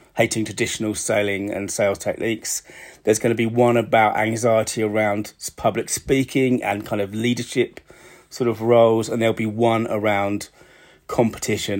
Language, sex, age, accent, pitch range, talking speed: English, male, 30-49, British, 100-115 Hz, 145 wpm